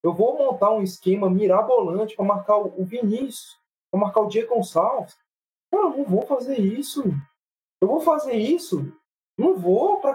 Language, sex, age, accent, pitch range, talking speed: Portuguese, male, 20-39, Brazilian, 180-250 Hz, 165 wpm